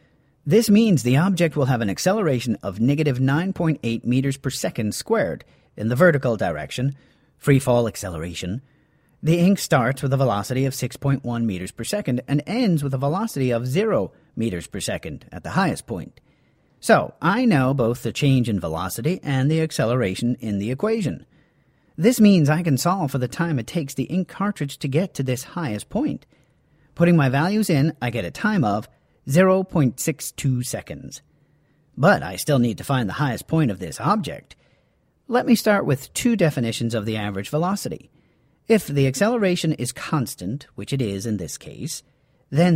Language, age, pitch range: English, 40-59, 120-165 Hz